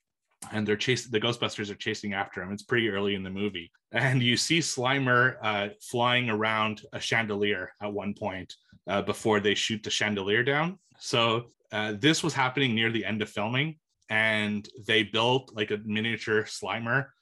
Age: 30-49